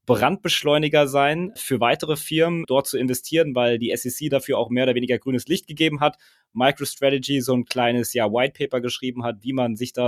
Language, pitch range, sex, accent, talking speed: German, 125-155 Hz, male, German, 195 wpm